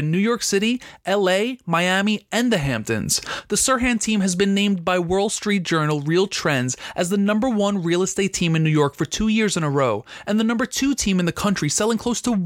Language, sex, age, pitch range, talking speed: English, male, 30-49, 155-215 Hz, 230 wpm